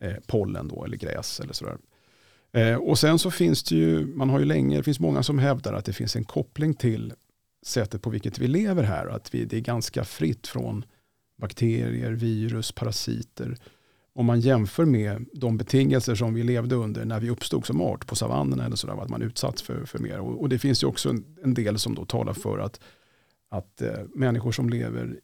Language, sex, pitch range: Swedish, male, 105-135 Hz